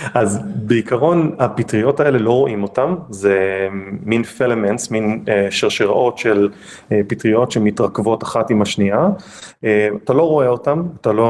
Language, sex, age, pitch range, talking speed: Hebrew, male, 30-49, 105-125 Hz, 140 wpm